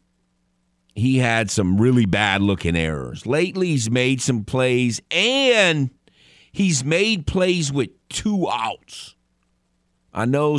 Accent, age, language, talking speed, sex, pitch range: American, 50-69, English, 115 wpm, male, 80-125 Hz